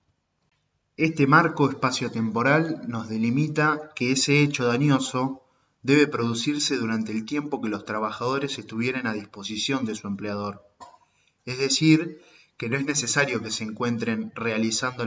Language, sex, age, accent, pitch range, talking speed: Spanish, male, 20-39, Argentinian, 110-140 Hz, 130 wpm